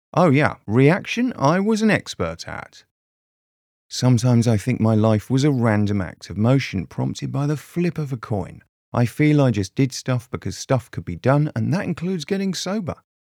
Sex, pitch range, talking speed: male, 105-145 Hz, 190 wpm